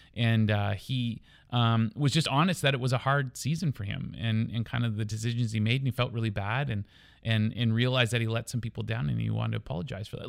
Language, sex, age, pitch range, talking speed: English, male, 30-49, 115-145 Hz, 260 wpm